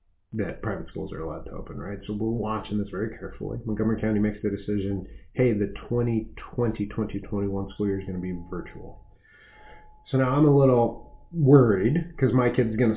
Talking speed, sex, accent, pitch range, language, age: 185 wpm, male, American, 100-120 Hz, English, 30-49